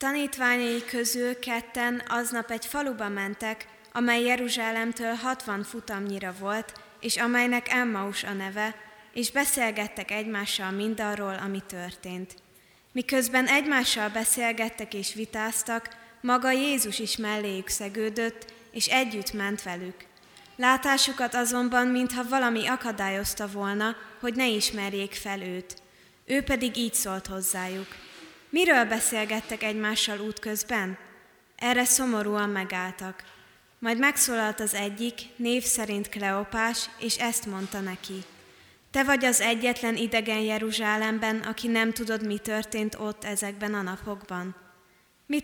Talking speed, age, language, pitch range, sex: 115 wpm, 20-39, Hungarian, 200-240 Hz, female